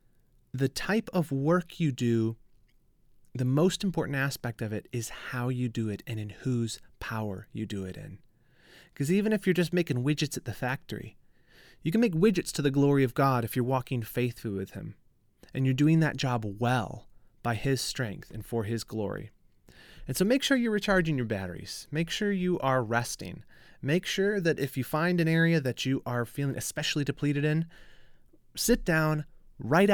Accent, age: American, 30-49